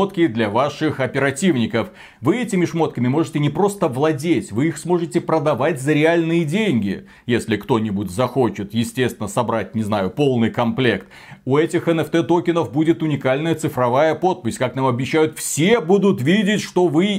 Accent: native